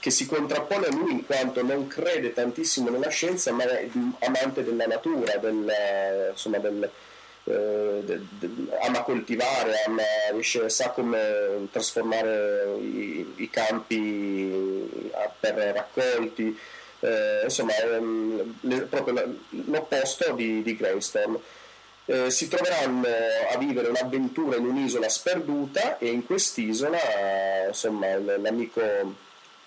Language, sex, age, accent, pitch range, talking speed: Italian, male, 30-49, native, 110-145 Hz, 110 wpm